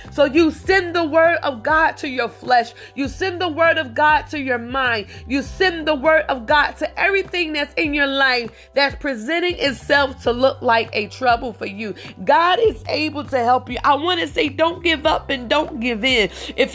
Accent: American